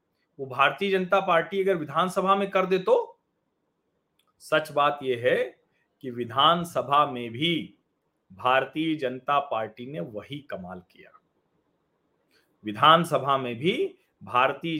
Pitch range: 150-225 Hz